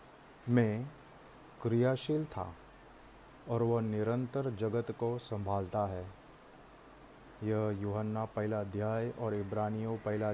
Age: 30-49